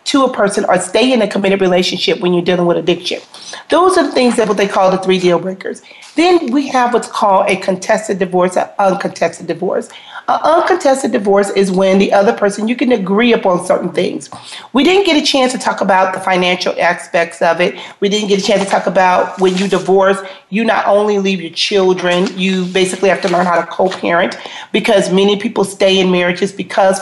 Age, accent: 40-59, American